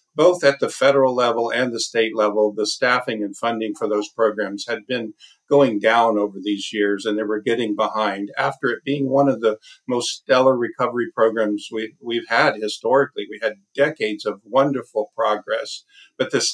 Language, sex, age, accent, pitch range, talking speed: English, male, 50-69, American, 105-135 Hz, 180 wpm